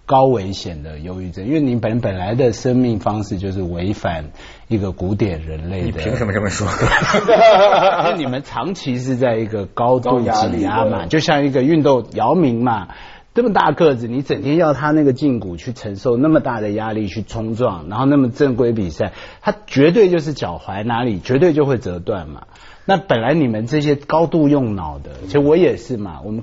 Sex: male